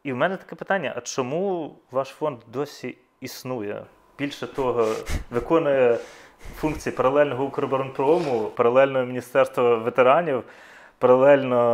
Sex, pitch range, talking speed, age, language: male, 125-155 Hz, 105 wpm, 30-49, Russian